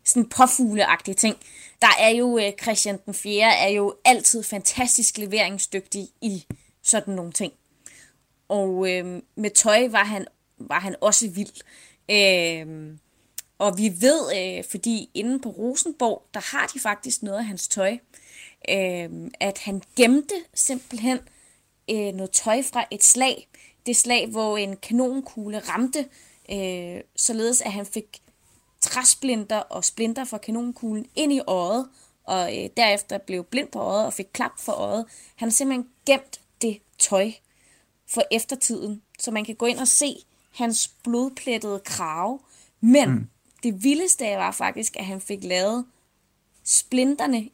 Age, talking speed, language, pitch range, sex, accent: 20-39, 145 wpm, Danish, 195-245 Hz, female, native